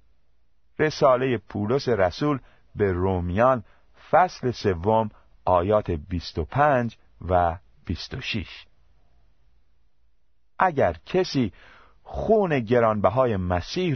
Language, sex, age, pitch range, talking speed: Persian, male, 50-69, 90-145 Hz, 85 wpm